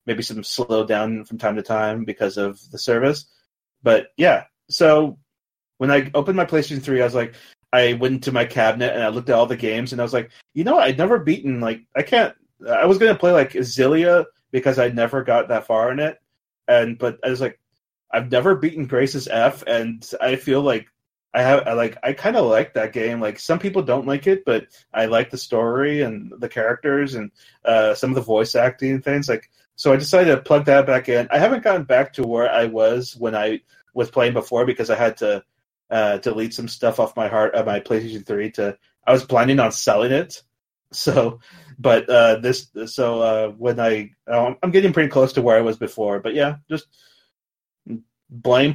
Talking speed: 215 wpm